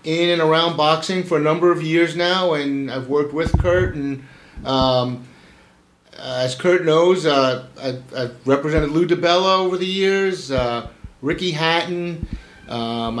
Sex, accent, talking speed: male, American, 155 wpm